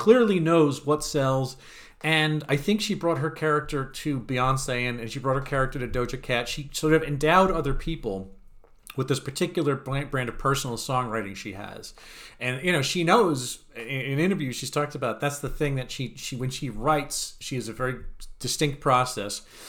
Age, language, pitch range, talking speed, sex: 40-59, English, 120-155 Hz, 185 wpm, male